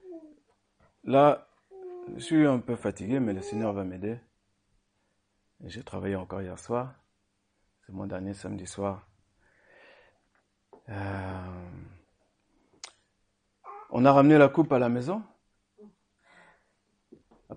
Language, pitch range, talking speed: French, 100-155 Hz, 110 wpm